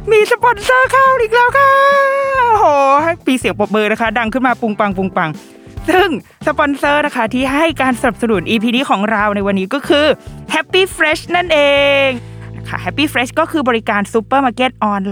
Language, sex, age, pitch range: Thai, female, 20-39, 180-255 Hz